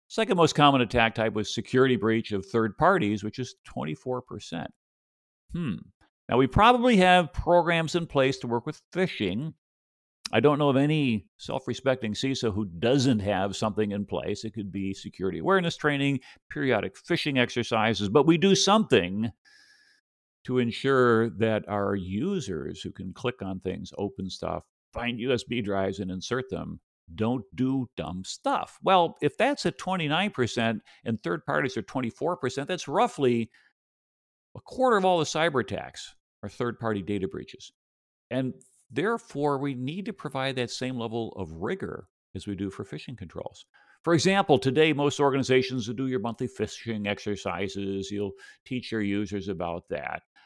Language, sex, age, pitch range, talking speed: English, male, 50-69, 105-145 Hz, 155 wpm